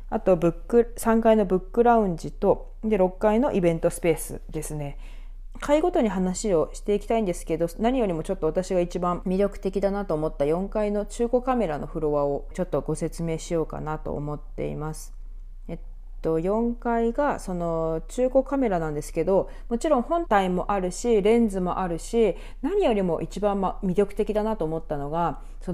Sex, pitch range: female, 165-235 Hz